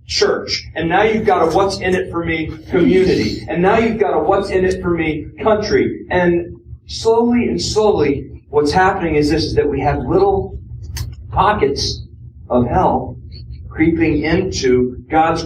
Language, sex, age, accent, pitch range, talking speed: English, male, 40-59, American, 135-190 Hz, 165 wpm